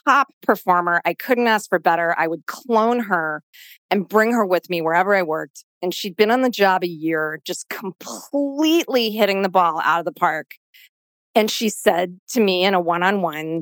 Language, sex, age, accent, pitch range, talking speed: English, female, 30-49, American, 180-280 Hz, 195 wpm